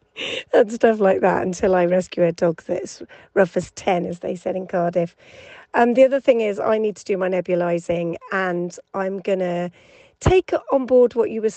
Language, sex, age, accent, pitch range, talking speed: English, female, 40-59, British, 175-215 Hz, 205 wpm